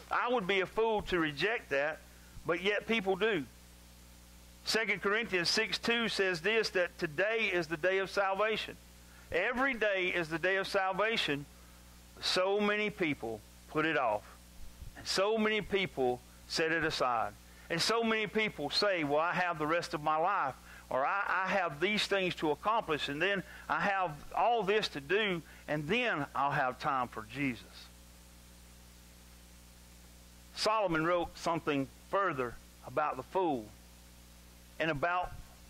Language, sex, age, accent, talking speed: English, male, 50-69, American, 155 wpm